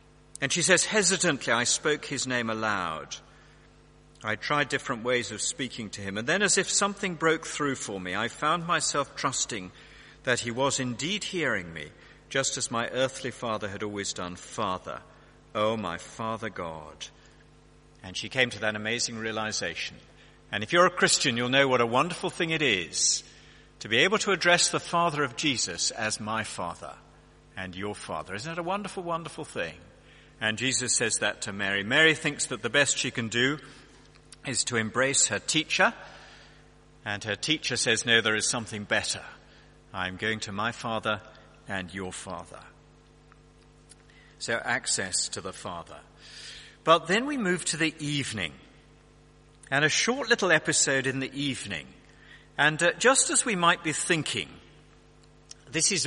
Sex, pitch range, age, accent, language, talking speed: male, 110-155 Hz, 50-69, British, English, 165 wpm